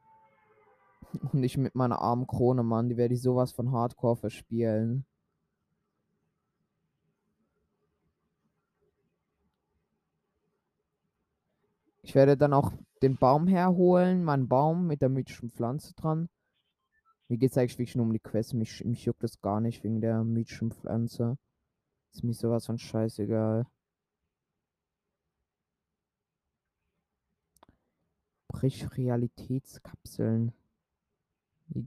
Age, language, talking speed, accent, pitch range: 20-39, German, 105 wpm, German, 115-140 Hz